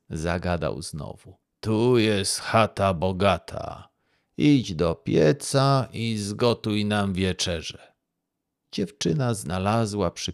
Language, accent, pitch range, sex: Polish, native, 95-135 Hz, male